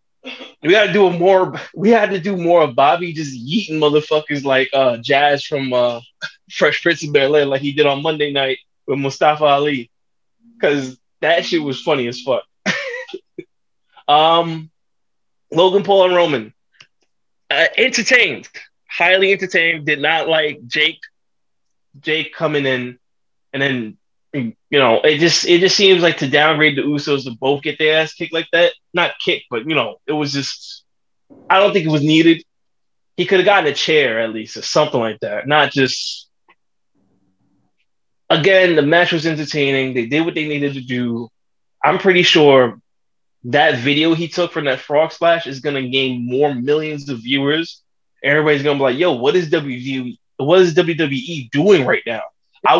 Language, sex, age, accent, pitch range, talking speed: English, male, 20-39, American, 135-170 Hz, 175 wpm